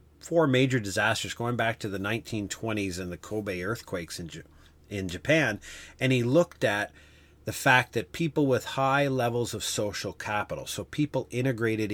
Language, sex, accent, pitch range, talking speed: English, male, American, 95-125 Hz, 155 wpm